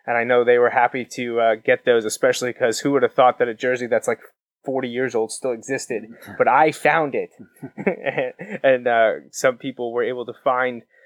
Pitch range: 125-155 Hz